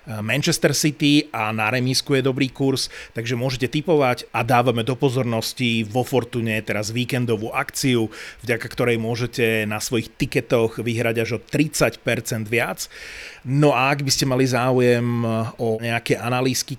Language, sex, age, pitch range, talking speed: Slovak, male, 30-49, 115-130 Hz, 145 wpm